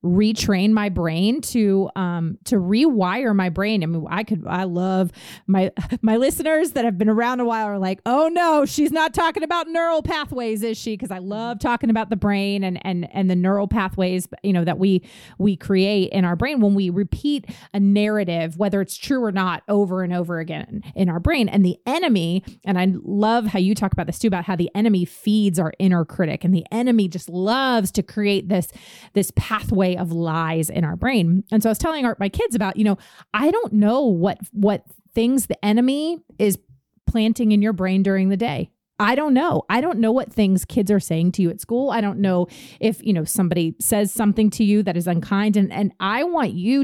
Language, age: English, 30-49